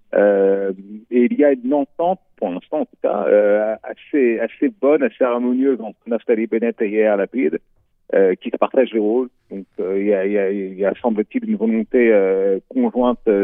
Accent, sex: French, male